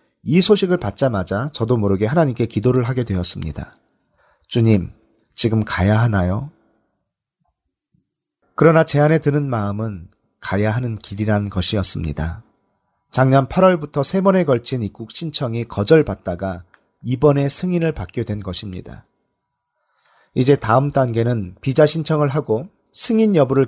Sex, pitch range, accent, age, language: male, 100-140 Hz, native, 40-59, Korean